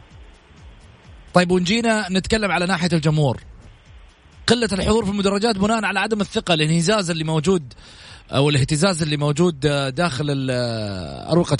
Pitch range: 150-205 Hz